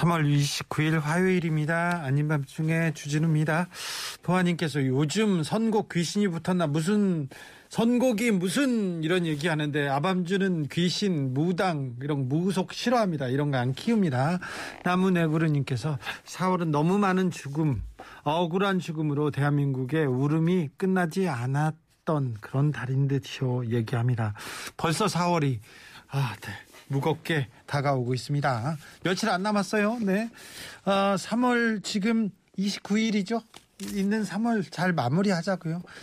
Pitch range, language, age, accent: 150-200 Hz, Korean, 40-59, native